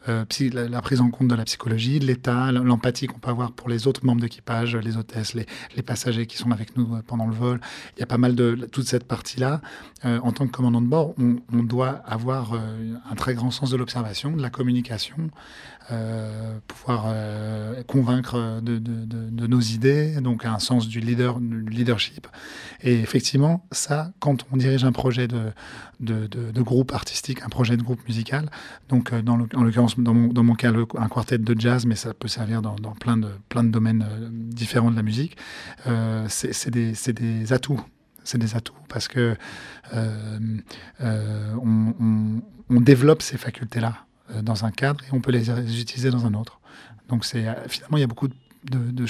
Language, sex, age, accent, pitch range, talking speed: French, male, 40-59, French, 115-125 Hz, 200 wpm